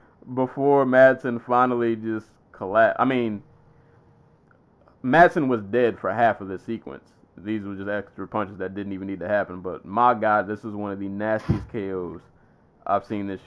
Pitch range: 95-115 Hz